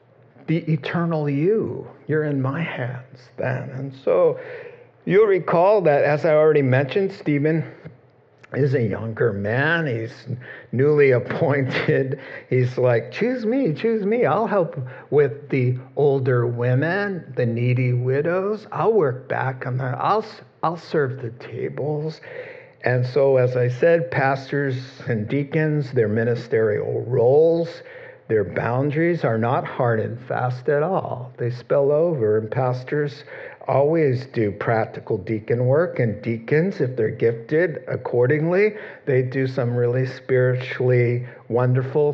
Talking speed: 130 wpm